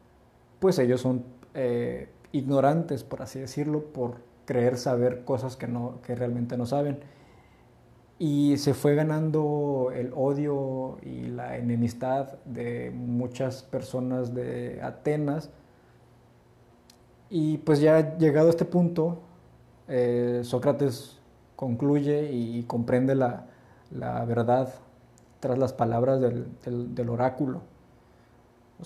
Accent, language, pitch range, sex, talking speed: Mexican, Spanish, 120-140 Hz, male, 115 wpm